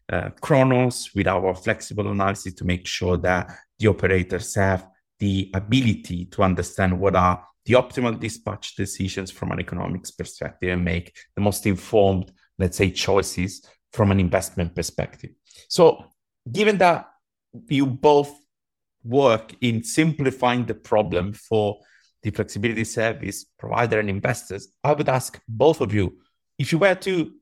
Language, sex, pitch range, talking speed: English, male, 95-125 Hz, 145 wpm